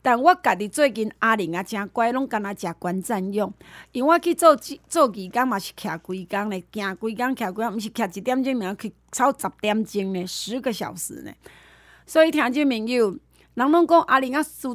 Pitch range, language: 210-290 Hz, Chinese